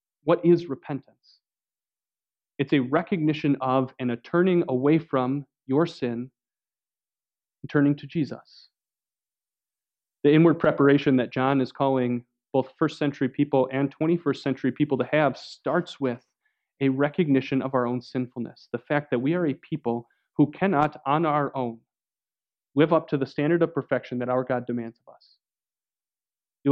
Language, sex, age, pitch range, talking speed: English, male, 30-49, 130-150 Hz, 155 wpm